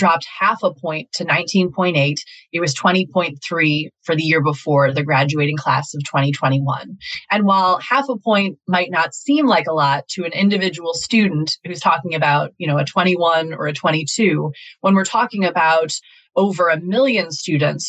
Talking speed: 170 wpm